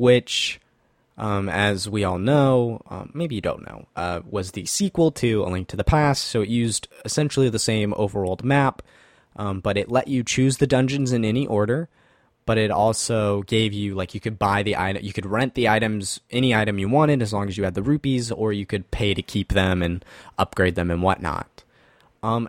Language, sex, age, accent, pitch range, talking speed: English, male, 20-39, American, 100-125 Hz, 215 wpm